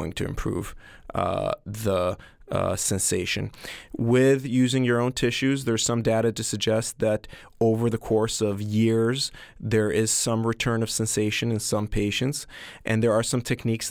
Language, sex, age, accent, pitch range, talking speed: English, male, 30-49, American, 105-115 Hz, 155 wpm